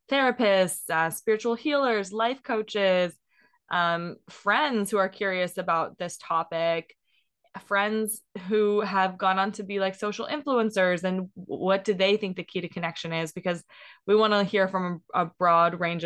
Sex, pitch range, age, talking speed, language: female, 170-210 Hz, 20-39, 160 wpm, English